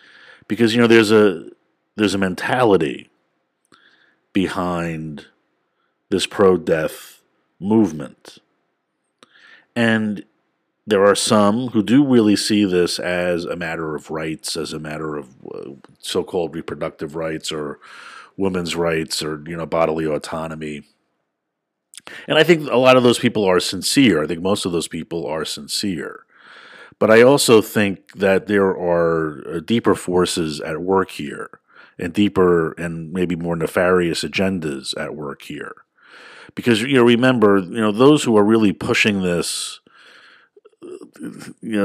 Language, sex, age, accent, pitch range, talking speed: English, male, 50-69, American, 85-115 Hz, 135 wpm